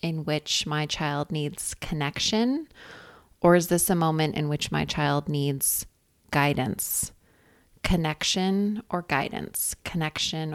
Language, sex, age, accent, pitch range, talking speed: English, female, 20-39, American, 150-185 Hz, 120 wpm